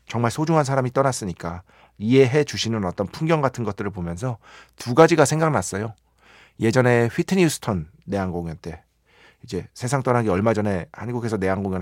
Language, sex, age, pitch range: Korean, male, 40-59, 100-160 Hz